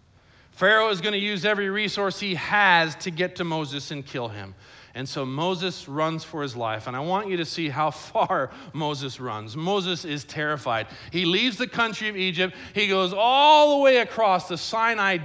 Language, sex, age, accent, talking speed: English, male, 40-59, American, 195 wpm